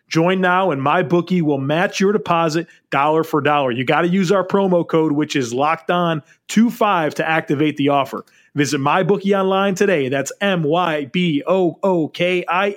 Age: 30-49